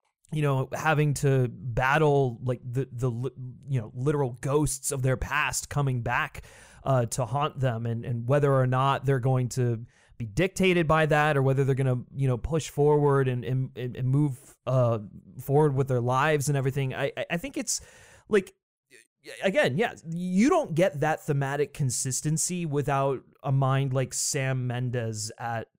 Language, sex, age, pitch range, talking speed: English, male, 20-39, 125-150 Hz, 170 wpm